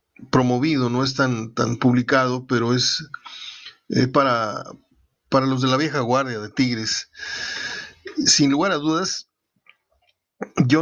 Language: Spanish